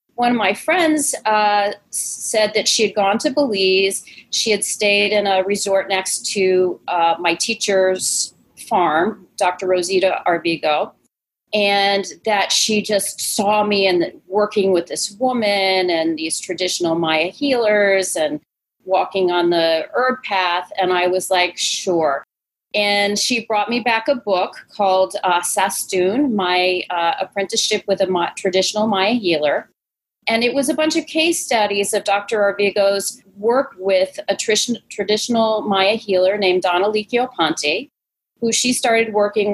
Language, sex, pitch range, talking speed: English, female, 180-215 Hz, 145 wpm